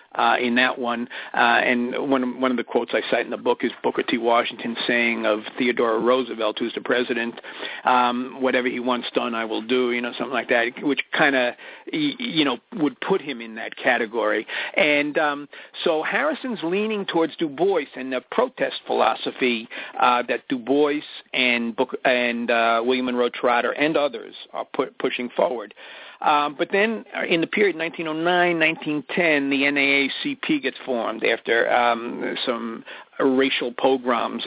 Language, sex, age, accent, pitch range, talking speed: English, male, 50-69, American, 120-160 Hz, 170 wpm